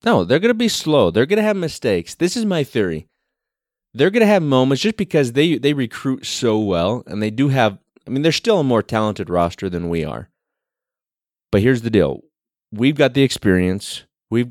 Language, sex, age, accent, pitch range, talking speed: English, male, 30-49, American, 100-140 Hz, 210 wpm